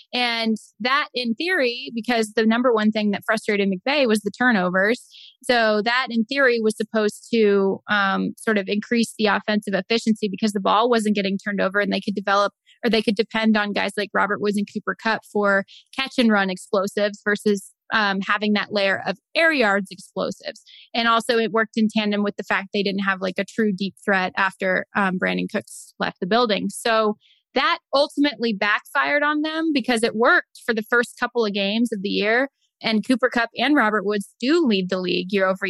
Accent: American